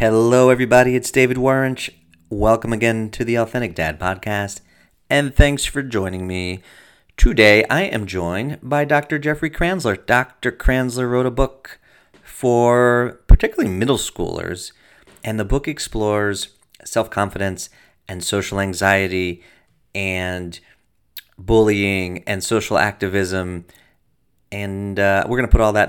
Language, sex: English, male